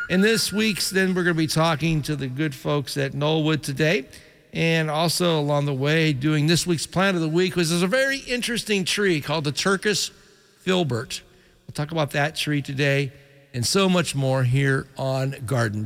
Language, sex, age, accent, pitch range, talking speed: English, male, 50-69, American, 140-185 Hz, 195 wpm